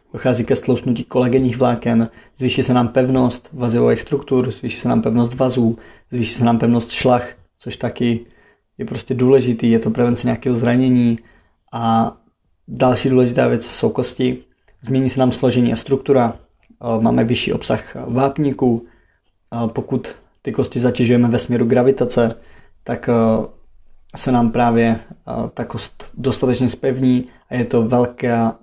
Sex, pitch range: male, 115-125 Hz